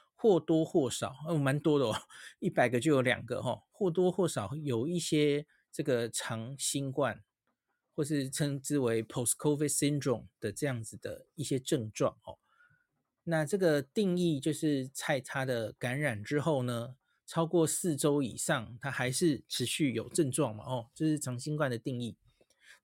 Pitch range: 125-165 Hz